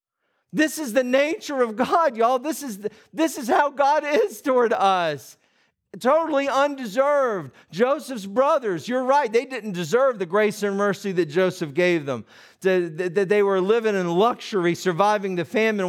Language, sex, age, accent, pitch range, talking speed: English, male, 50-69, American, 180-260 Hz, 160 wpm